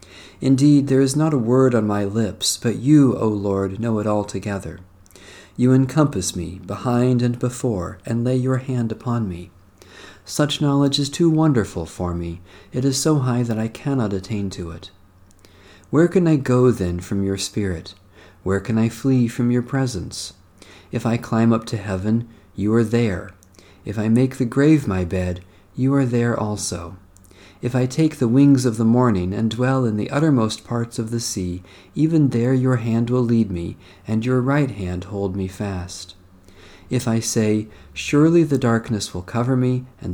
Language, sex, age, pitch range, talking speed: English, male, 40-59, 95-125 Hz, 180 wpm